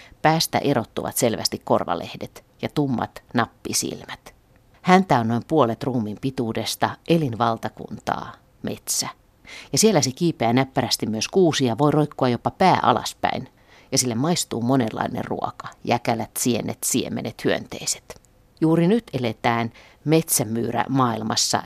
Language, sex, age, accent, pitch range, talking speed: Finnish, female, 50-69, native, 115-145 Hz, 115 wpm